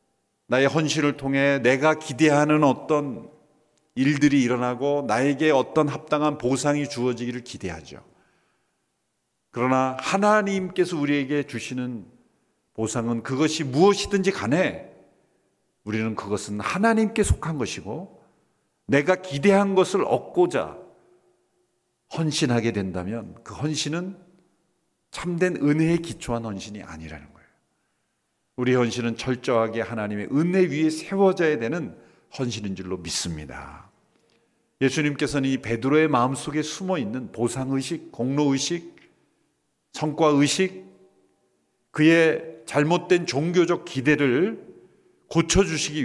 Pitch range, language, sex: 115-160 Hz, Korean, male